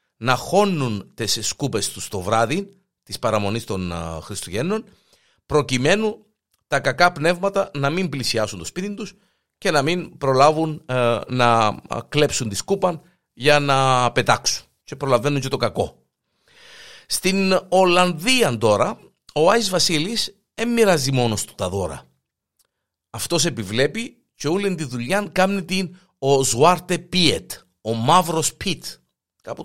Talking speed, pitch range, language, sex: 130 wpm, 115-180 Hz, Greek, male